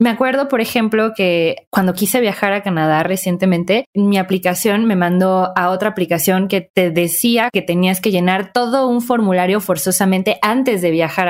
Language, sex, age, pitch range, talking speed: Spanish, female, 20-39, 180-220 Hz, 175 wpm